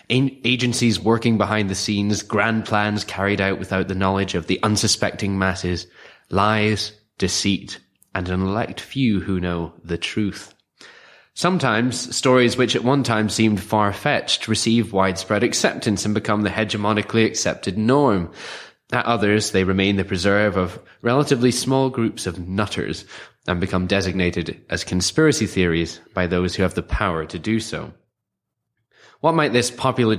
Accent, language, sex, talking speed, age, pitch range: British, English, male, 145 wpm, 20-39, 90-115 Hz